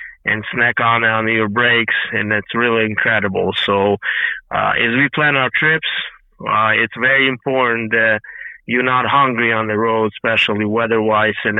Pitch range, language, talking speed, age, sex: 105-125 Hz, English, 160 wpm, 20-39, male